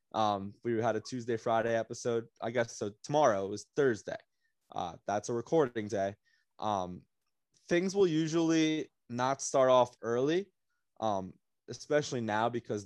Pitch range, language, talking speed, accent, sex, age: 105-125 Hz, English, 145 wpm, American, male, 20-39